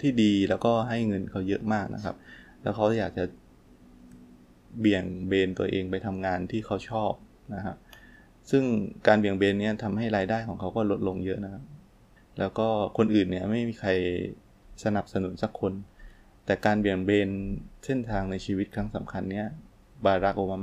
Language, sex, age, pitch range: Thai, male, 20-39, 95-110 Hz